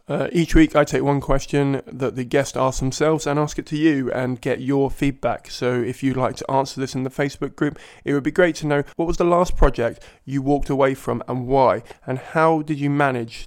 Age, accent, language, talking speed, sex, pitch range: 20-39, British, English, 240 wpm, male, 125-145 Hz